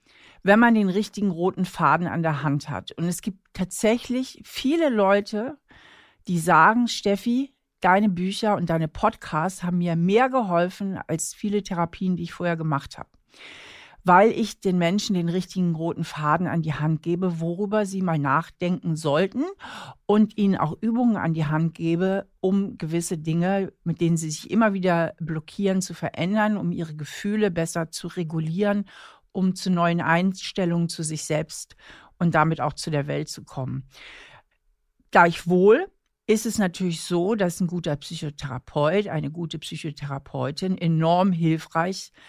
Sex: female